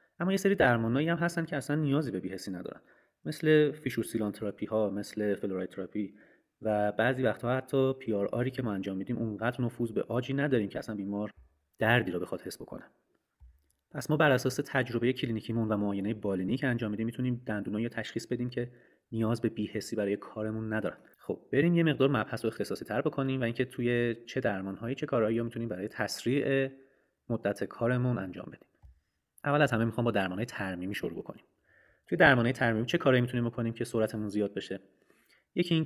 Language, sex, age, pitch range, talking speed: Persian, male, 30-49, 100-125 Hz, 180 wpm